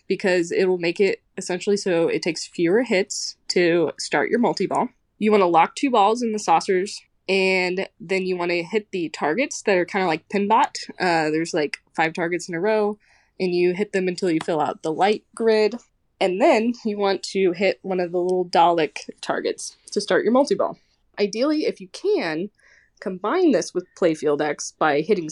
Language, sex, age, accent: English, female, 20-39, American